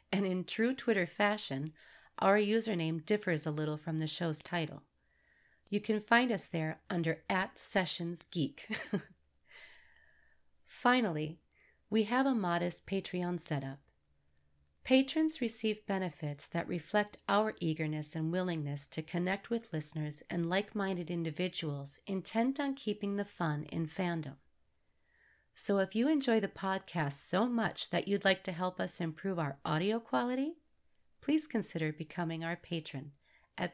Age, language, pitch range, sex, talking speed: 40-59, English, 150-200 Hz, female, 135 wpm